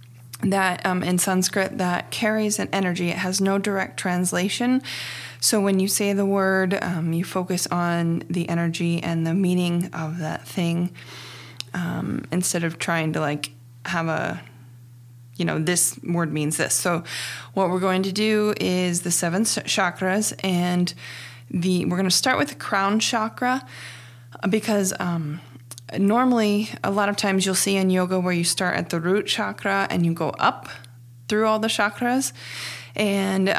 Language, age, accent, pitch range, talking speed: English, 20-39, American, 170-195 Hz, 165 wpm